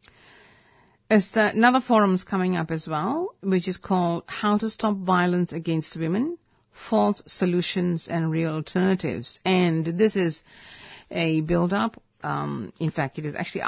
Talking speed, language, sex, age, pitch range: 140 wpm, English, female, 50-69, 155-190 Hz